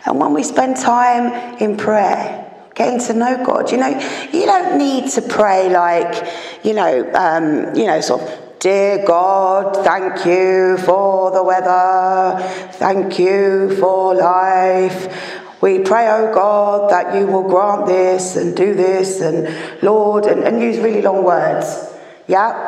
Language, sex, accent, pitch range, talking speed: English, female, British, 185-225 Hz, 155 wpm